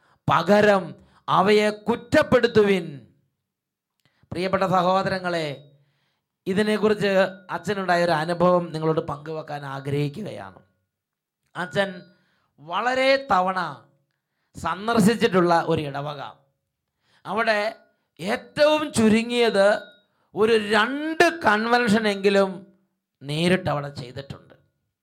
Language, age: English, 30-49